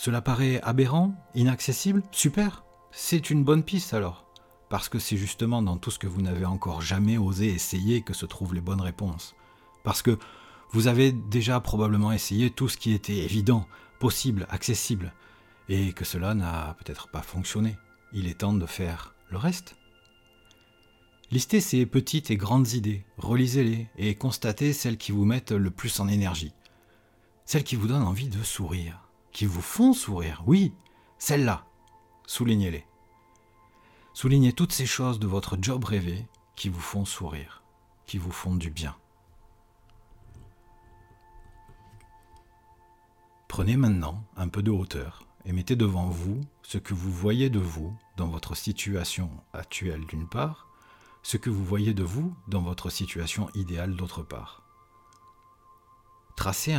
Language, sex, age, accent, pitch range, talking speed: French, male, 40-59, French, 90-120 Hz, 150 wpm